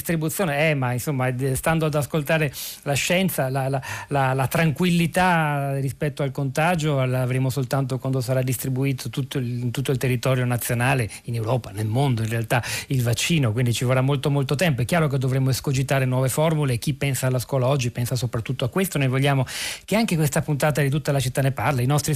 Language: Italian